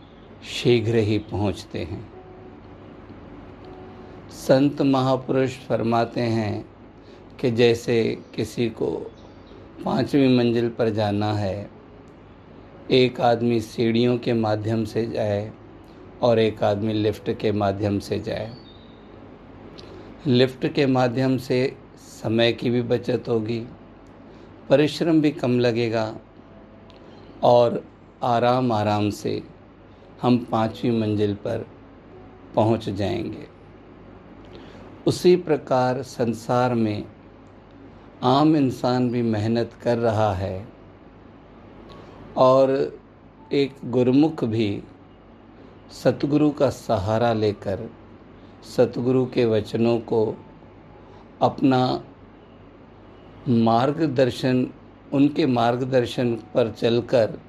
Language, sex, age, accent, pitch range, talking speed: Hindi, male, 50-69, native, 105-125 Hz, 90 wpm